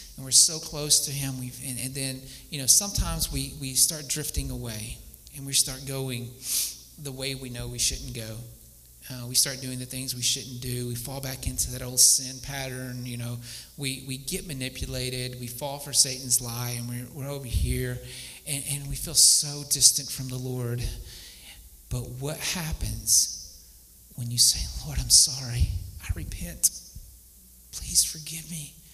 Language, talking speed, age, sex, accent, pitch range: English, 175 wpm, 40-59, male, American, 120-165 Hz